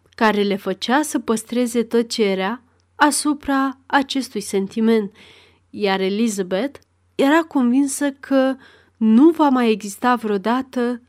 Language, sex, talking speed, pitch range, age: Romanian, female, 105 wpm, 205-270 Hz, 30-49